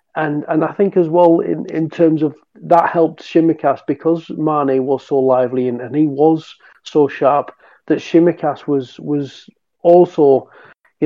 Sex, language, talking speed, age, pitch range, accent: male, English, 165 wpm, 40-59, 145-170 Hz, British